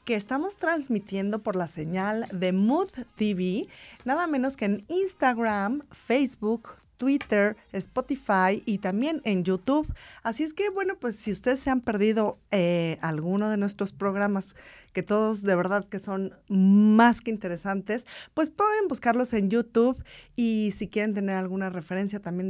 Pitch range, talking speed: 185-245 Hz, 150 wpm